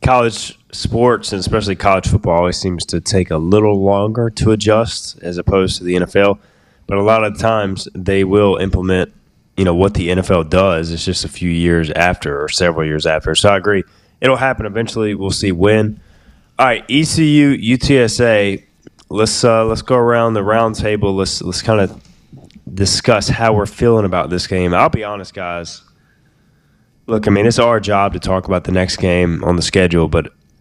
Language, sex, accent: English, male, American